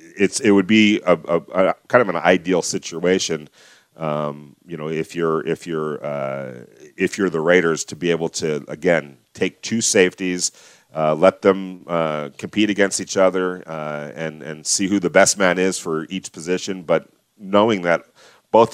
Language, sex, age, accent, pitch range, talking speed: English, male, 40-59, American, 75-95 Hz, 180 wpm